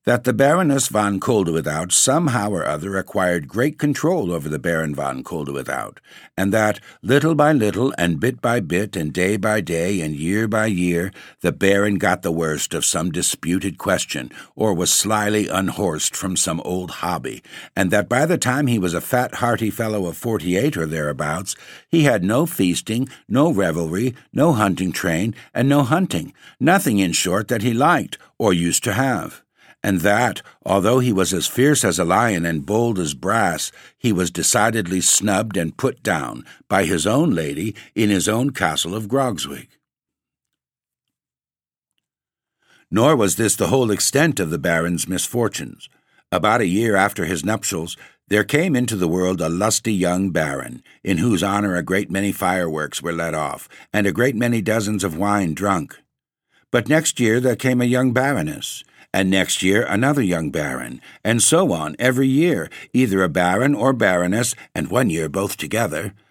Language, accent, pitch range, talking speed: English, American, 90-120 Hz, 170 wpm